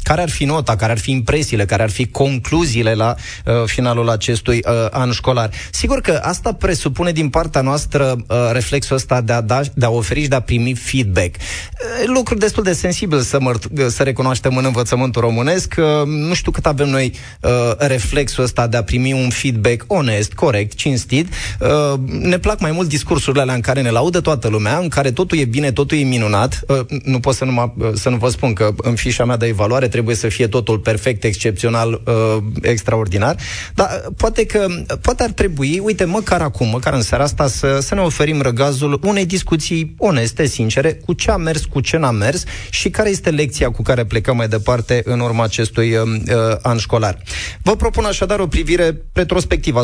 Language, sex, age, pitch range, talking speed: Romanian, male, 20-39, 115-150 Hz, 185 wpm